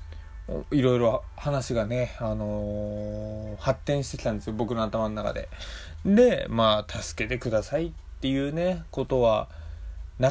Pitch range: 100-155 Hz